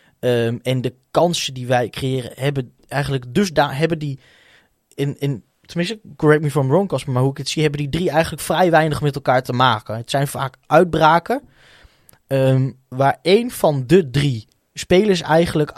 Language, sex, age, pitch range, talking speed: Dutch, male, 20-39, 115-145 Hz, 185 wpm